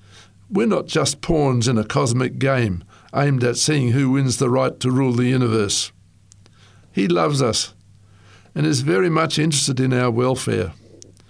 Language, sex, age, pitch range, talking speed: English, male, 60-79, 105-145 Hz, 160 wpm